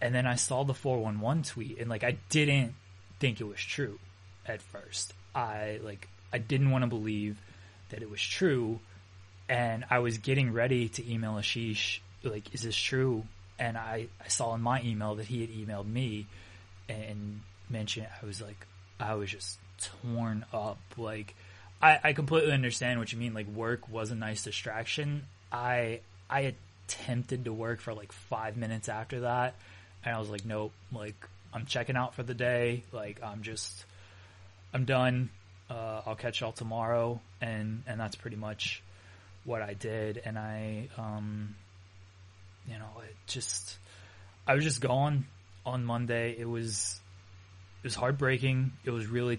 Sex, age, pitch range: male, 20-39, 95-120 Hz